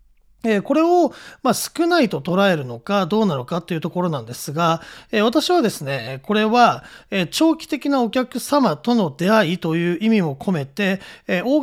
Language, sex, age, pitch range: Japanese, male, 40-59, 170-250 Hz